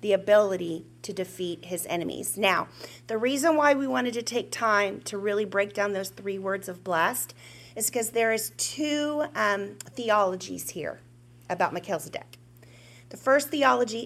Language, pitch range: English, 170-230 Hz